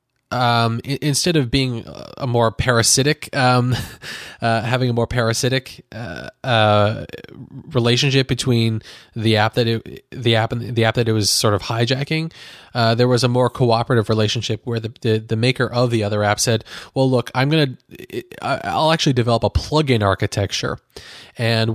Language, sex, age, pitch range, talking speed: English, male, 20-39, 110-130 Hz, 170 wpm